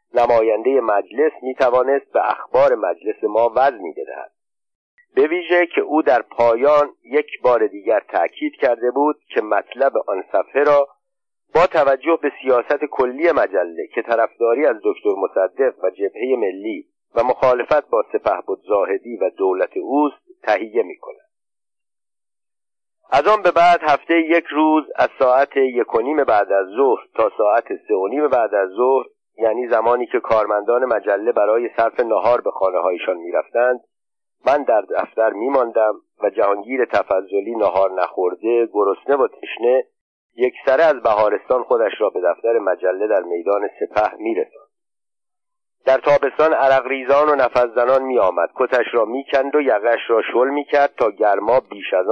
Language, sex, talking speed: Persian, male, 140 wpm